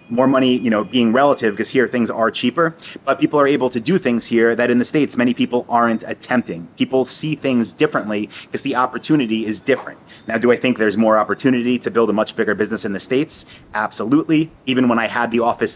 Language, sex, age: English, male, 30-49